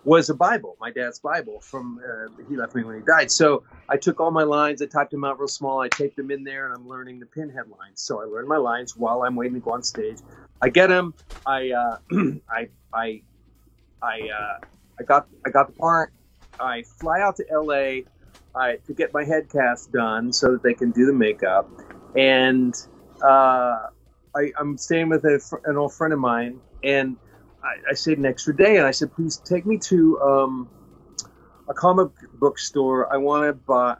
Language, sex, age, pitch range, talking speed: English, male, 30-49, 125-155 Hz, 205 wpm